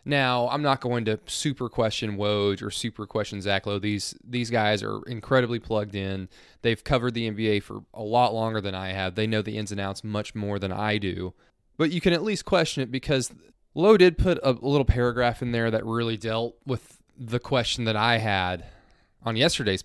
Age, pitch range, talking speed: 20-39, 105-125 Hz, 210 wpm